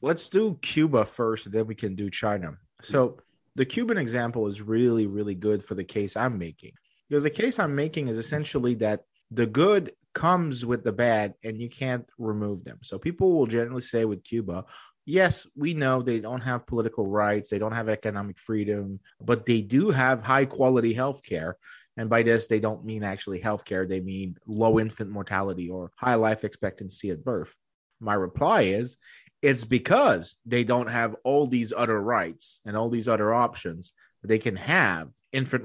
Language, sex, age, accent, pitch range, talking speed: English, male, 30-49, American, 110-130 Hz, 180 wpm